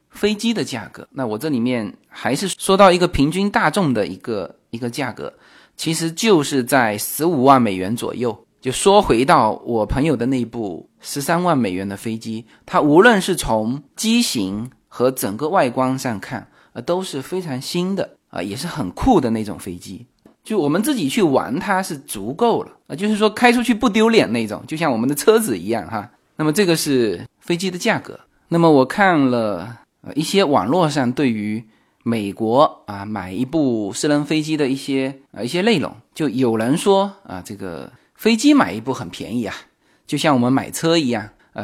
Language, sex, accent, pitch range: Chinese, male, native, 120-195 Hz